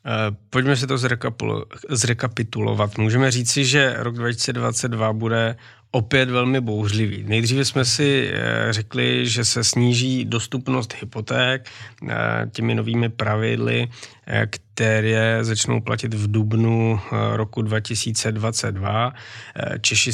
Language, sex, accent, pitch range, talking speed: Czech, male, native, 110-120 Hz, 100 wpm